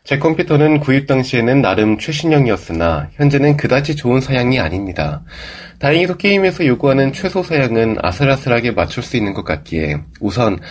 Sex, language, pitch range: male, Korean, 100-155 Hz